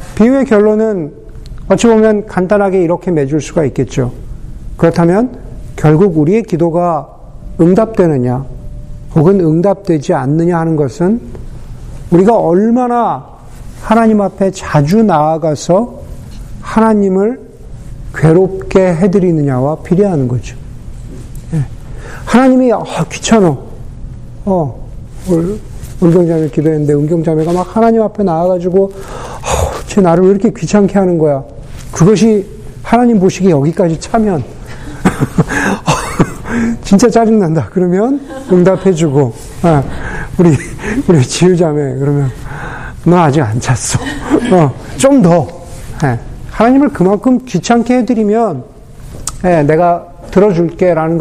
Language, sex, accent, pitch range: Korean, male, native, 135-200 Hz